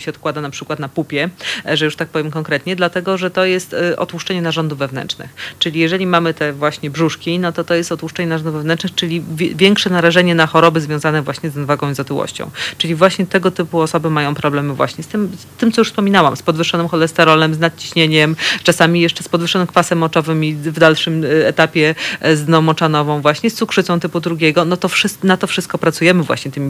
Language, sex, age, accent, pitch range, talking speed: Polish, female, 30-49, native, 155-175 Hz, 200 wpm